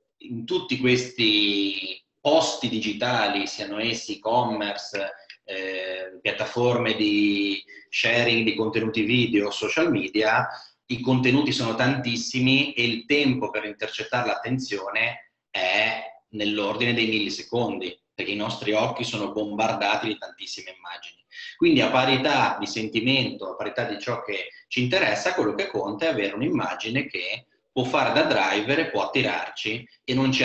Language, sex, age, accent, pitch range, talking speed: Italian, male, 30-49, native, 105-130 Hz, 130 wpm